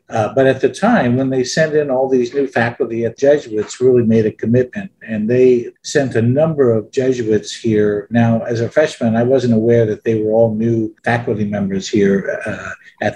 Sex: male